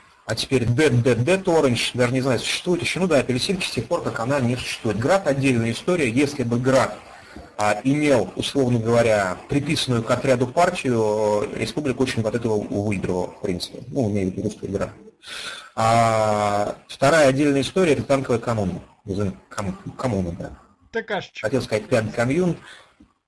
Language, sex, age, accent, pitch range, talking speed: Russian, male, 30-49, native, 110-140 Hz, 150 wpm